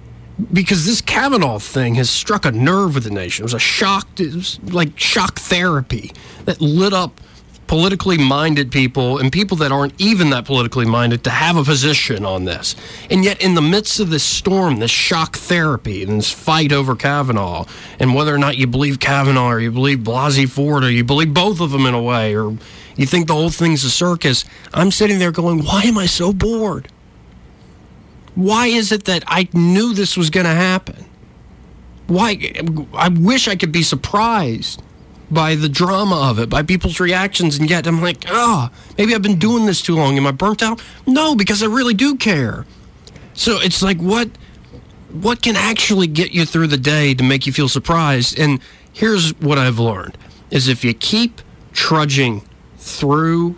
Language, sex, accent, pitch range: English, male, American, 130-185 Hz